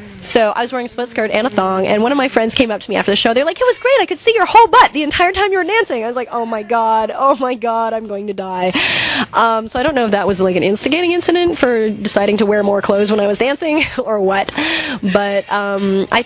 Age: 20-39